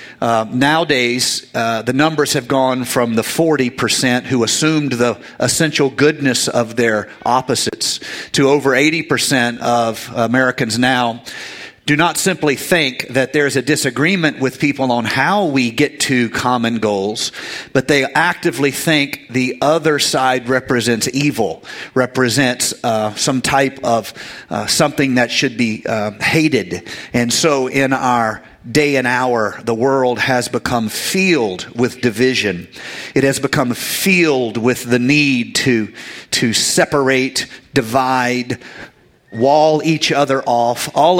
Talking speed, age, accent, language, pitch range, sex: 135 wpm, 40-59, American, English, 120-145 Hz, male